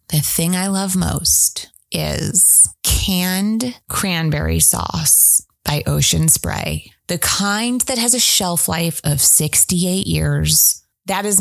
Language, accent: English, American